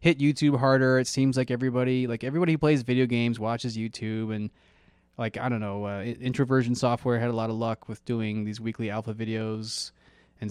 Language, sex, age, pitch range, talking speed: English, male, 20-39, 110-130 Hz, 200 wpm